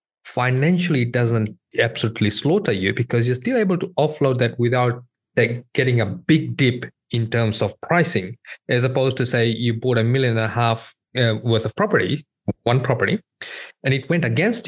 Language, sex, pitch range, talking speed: English, male, 110-130 Hz, 175 wpm